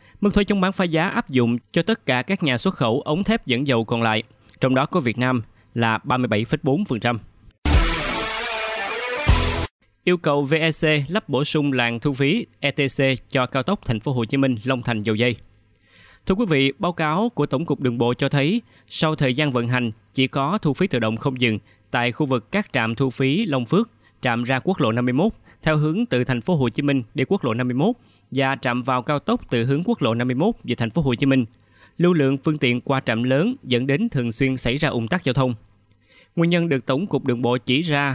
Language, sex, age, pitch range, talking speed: Vietnamese, male, 20-39, 120-150 Hz, 225 wpm